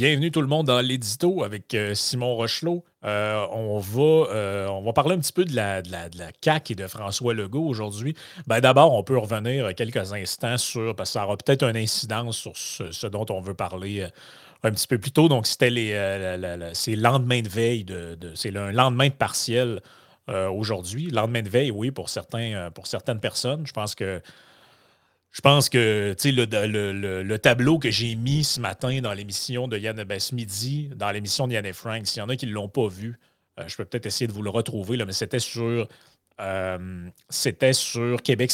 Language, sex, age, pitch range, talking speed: French, male, 30-49, 100-130 Hz, 220 wpm